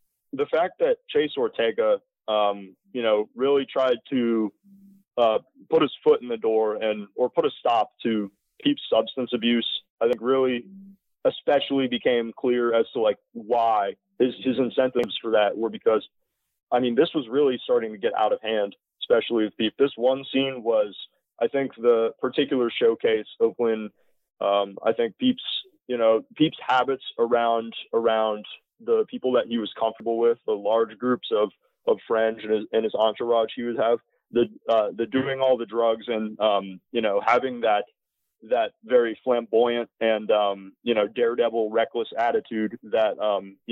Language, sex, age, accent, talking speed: English, male, 20-39, American, 170 wpm